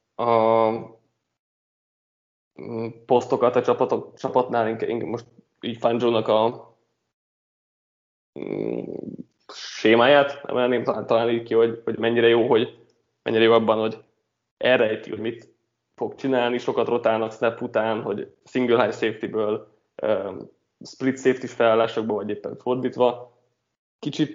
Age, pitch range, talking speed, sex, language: 20-39, 115-125 Hz, 100 wpm, male, Hungarian